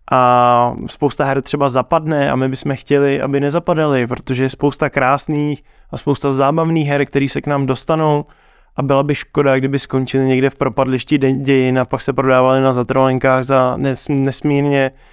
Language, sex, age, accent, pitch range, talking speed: Czech, male, 20-39, native, 130-150 Hz, 165 wpm